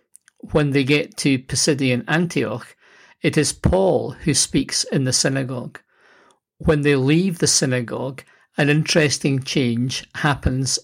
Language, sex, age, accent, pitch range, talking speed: English, male, 60-79, British, 130-160 Hz, 125 wpm